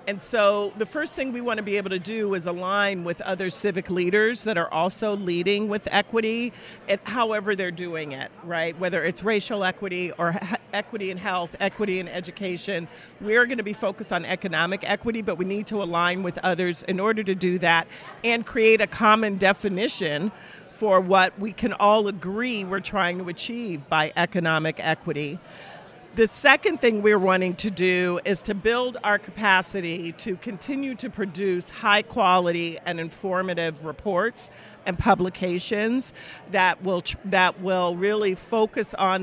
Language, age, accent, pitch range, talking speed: English, 50-69, American, 180-215 Hz, 165 wpm